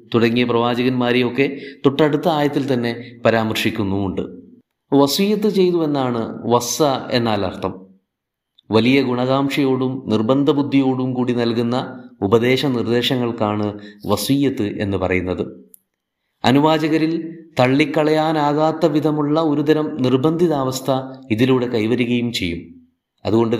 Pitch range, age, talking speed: 115-145 Hz, 30-49, 80 wpm